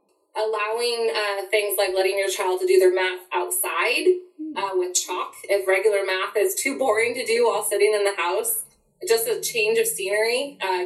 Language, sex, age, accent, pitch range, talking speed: English, female, 20-39, American, 180-240 Hz, 190 wpm